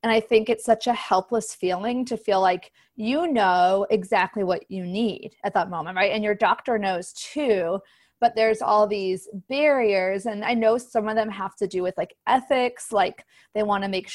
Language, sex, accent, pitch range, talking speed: English, female, American, 190-230 Hz, 205 wpm